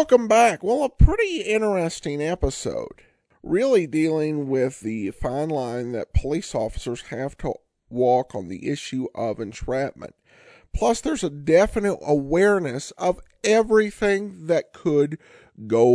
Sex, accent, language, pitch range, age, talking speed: male, American, English, 135-205 Hz, 50-69, 130 wpm